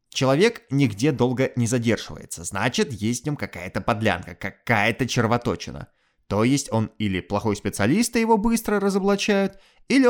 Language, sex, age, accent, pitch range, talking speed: Russian, male, 20-39, native, 110-180 Hz, 145 wpm